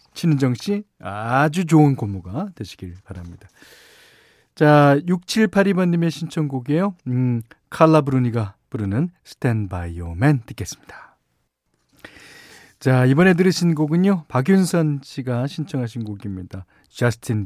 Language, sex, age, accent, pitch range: Korean, male, 40-59, native, 105-155 Hz